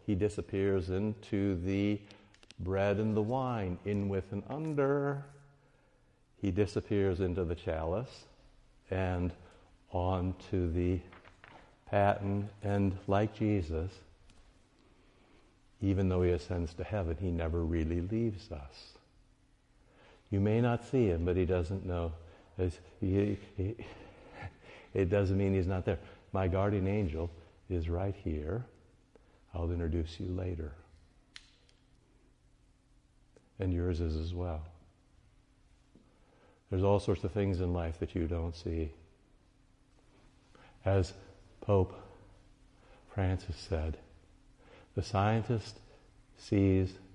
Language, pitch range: English, 85-100 Hz